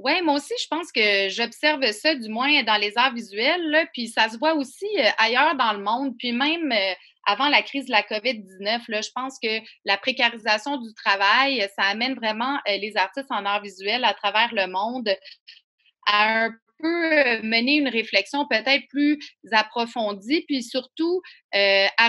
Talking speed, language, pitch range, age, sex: 170 wpm, French, 205-275 Hz, 30-49, female